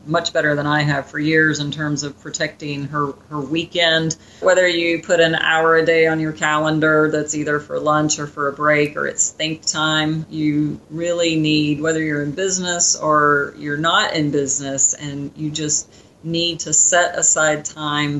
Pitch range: 145-160 Hz